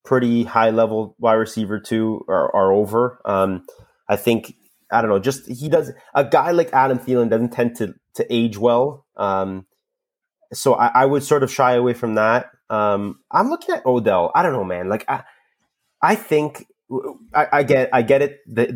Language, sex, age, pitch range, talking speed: English, male, 30-49, 110-130 Hz, 190 wpm